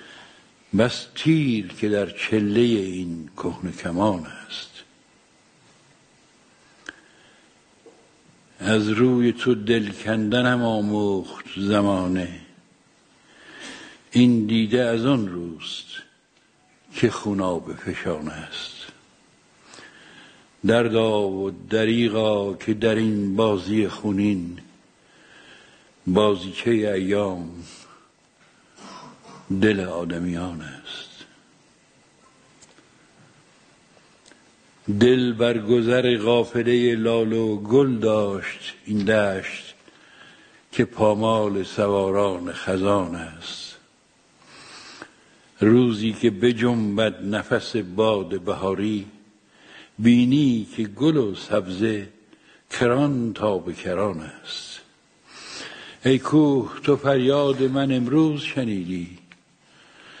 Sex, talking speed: male, 75 wpm